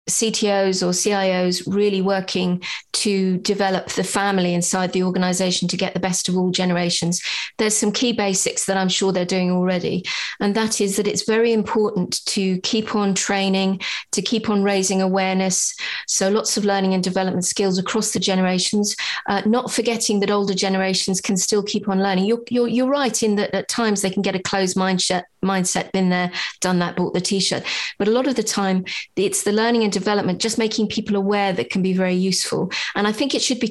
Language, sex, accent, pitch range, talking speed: English, female, British, 185-215 Hz, 205 wpm